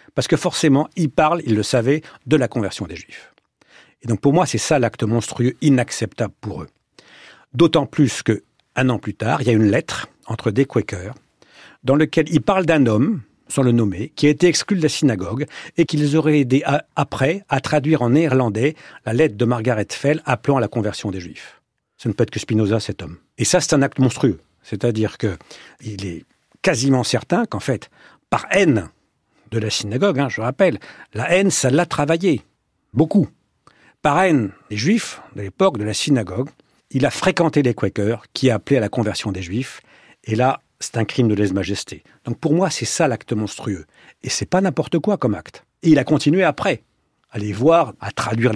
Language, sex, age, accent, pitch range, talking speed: French, male, 50-69, French, 110-160 Hz, 200 wpm